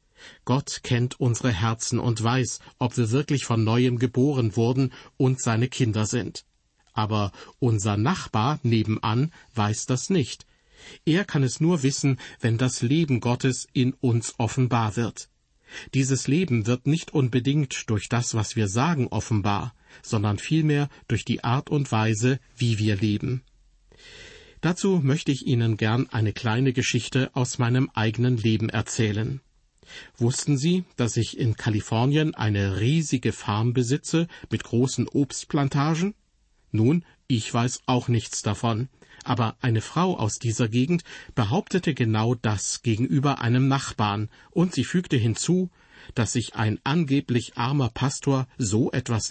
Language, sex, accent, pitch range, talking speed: German, male, German, 115-140 Hz, 140 wpm